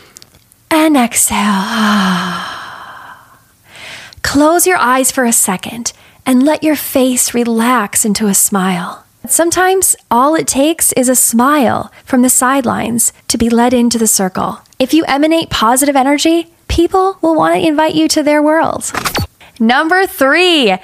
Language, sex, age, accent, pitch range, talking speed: English, female, 10-29, American, 230-330 Hz, 140 wpm